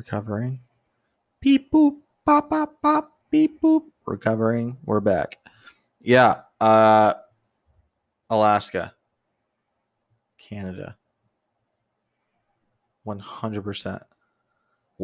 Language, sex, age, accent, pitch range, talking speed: English, male, 20-39, American, 100-120 Hz, 65 wpm